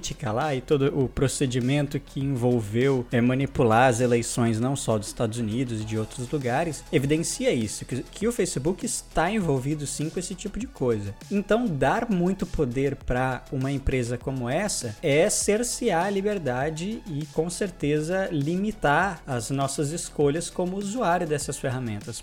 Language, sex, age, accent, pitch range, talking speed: Portuguese, male, 20-39, Brazilian, 135-190 Hz, 155 wpm